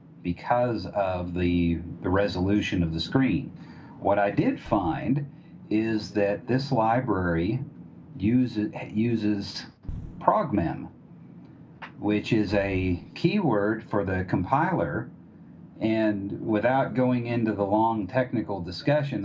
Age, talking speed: 50-69, 110 wpm